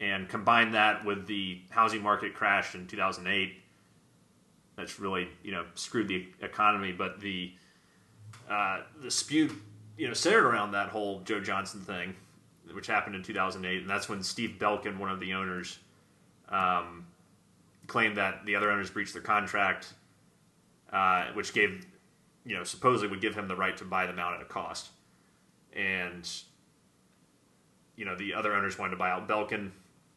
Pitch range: 95-115 Hz